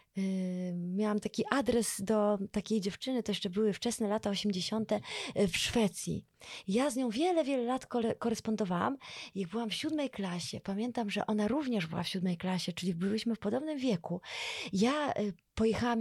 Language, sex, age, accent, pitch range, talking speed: Polish, female, 20-39, native, 200-255 Hz, 155 wpm